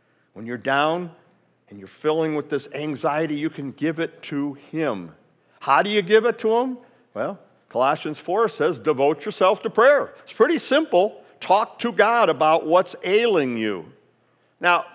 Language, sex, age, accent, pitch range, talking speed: English, male, 60-79, American, 155-215 Hz, 165 wpm